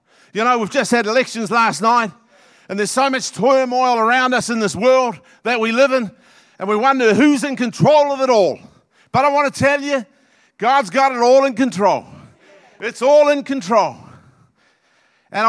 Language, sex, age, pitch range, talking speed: English, male, 50-69, 215-280 Hz, 185 wpm